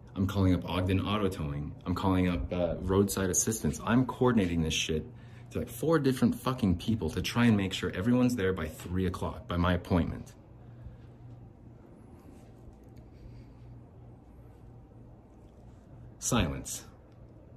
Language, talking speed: English, 125 wpm